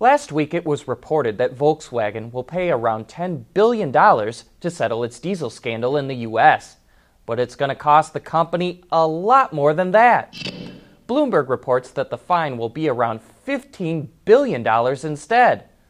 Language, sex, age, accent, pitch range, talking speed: English, male, 30-49, American, 115-175 Hz, 160 wpm